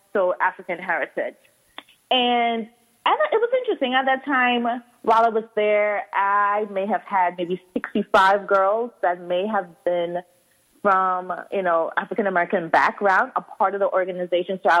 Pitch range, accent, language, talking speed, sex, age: 175-215 Hz, American, English, 150 wpm, female, 20-39